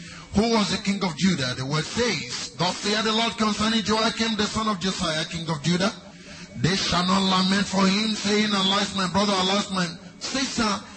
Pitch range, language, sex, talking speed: 175-225 Hz, English, male, 190 wpm